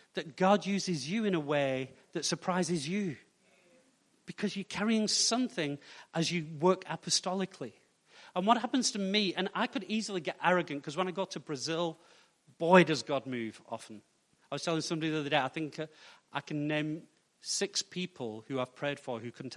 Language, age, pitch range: English, 40-59, 155-215 Hz